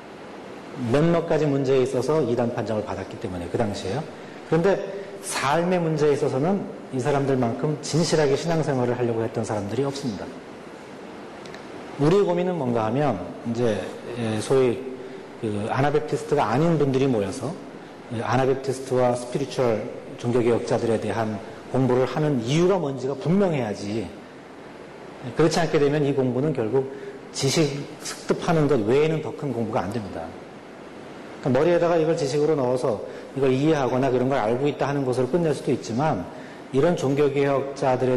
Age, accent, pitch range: 40-59, native, 120-150 Hz